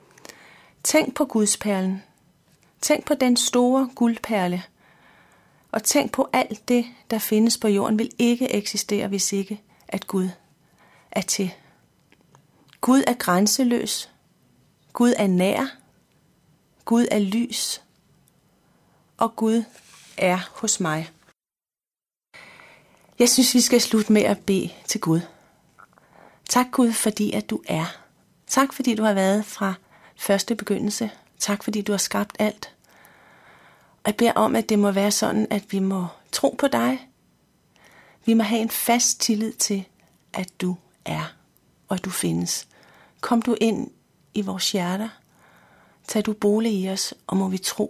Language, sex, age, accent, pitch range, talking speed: Danish, female, 30-49, native, 185-230 Hz, 145 wpm